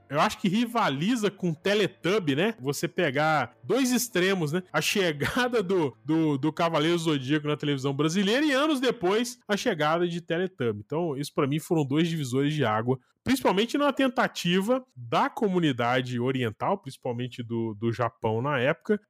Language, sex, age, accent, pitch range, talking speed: Portuguese, male, 20-39, Brazilian, 145-215 Hz, 160 wpm